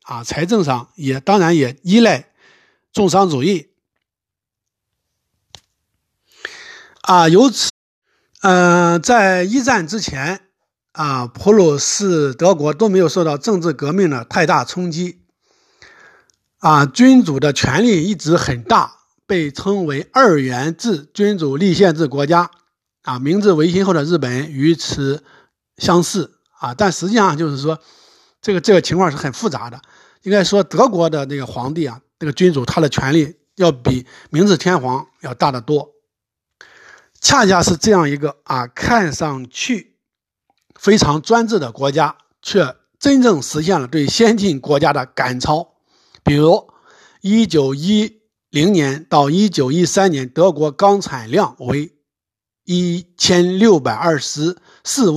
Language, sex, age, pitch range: Chinese, male, 60-79, 140-195 Hz